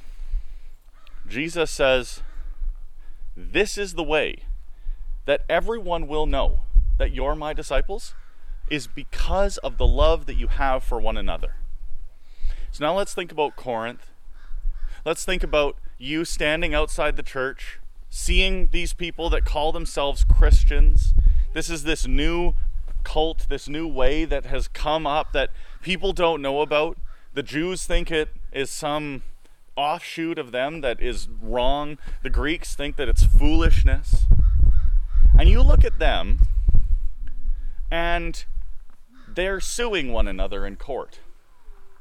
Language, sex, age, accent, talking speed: English, male, 30-49, American, 135 wpm